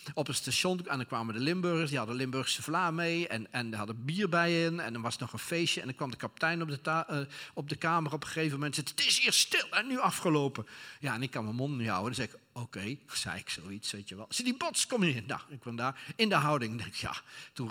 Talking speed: 285 wpm